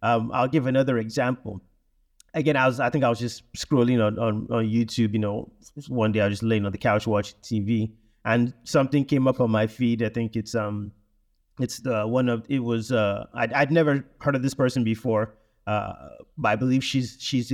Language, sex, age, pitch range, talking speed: English, male, 30-49, 110-135 Hz, 210 wpm